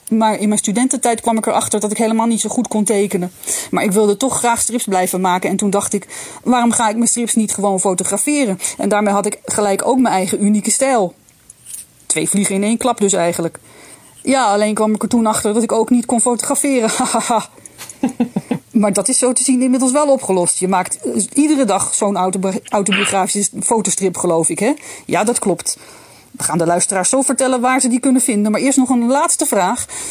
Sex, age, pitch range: female, 30-49, 195-250 Hz